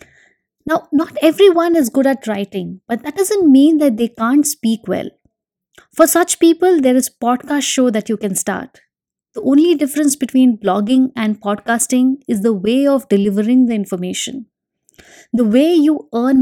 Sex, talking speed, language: female, 170 wpm, English